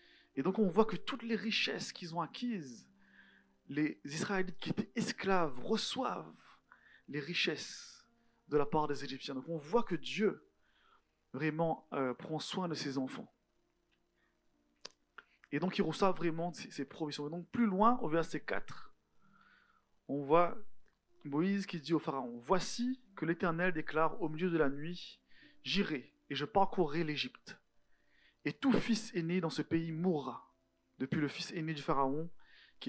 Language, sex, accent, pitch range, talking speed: French, male, French, 145-205 Hz, 160 wpm